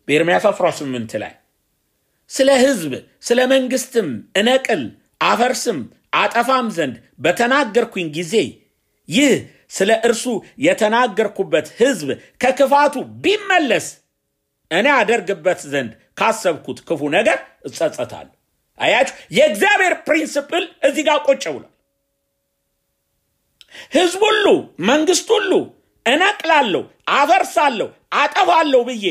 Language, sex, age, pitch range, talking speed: English, male, 50-69, 200-315 Hz, 95 wpm